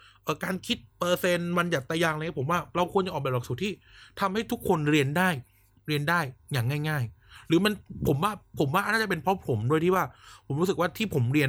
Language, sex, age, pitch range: Thai, male, 20-39, 115-165 Hz